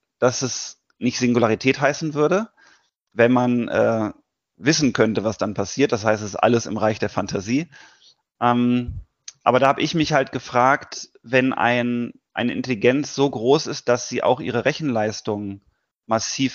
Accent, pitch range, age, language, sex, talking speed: German, 110-135 Hz, 30-49, German, male, 155 wpm